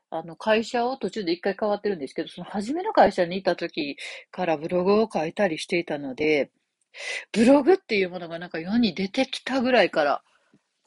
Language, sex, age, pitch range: Japanese, female, 40-59, 165-235 Hz